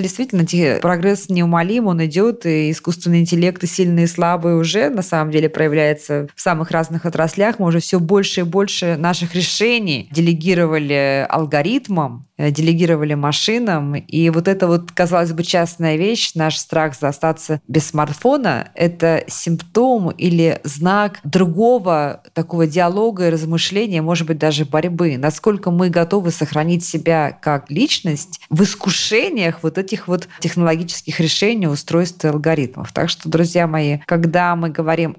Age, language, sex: 20-39, Russian, female